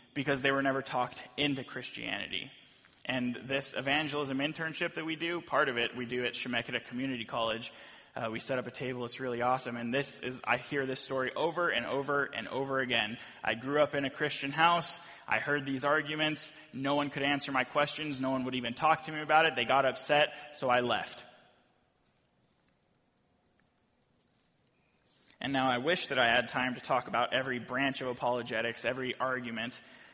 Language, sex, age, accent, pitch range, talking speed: English, male, 20-39, American, 120-140 Hz, 185 wpm